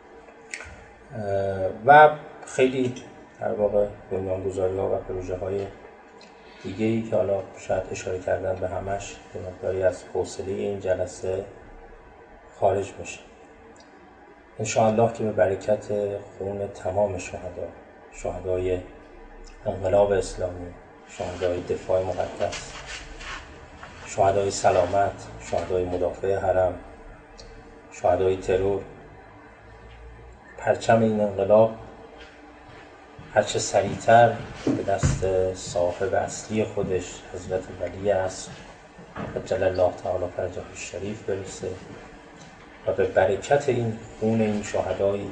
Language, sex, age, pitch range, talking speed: Persian, male, 30-49, 95-110 Hz, 100 wpm